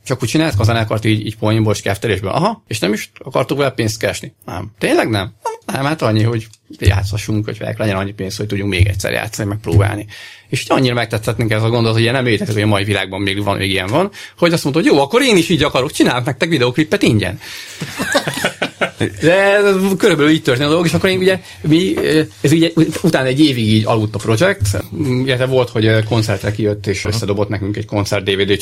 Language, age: Hungarian, 30-49